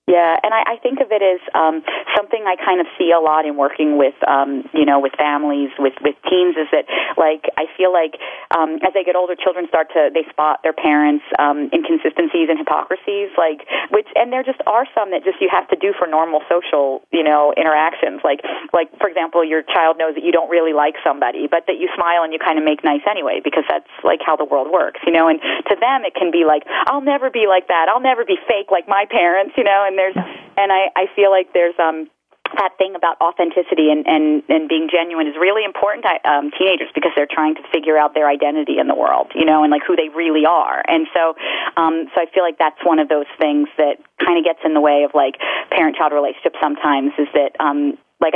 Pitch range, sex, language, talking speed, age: 150-185 Hz, female, English, 240 wpm, 40-59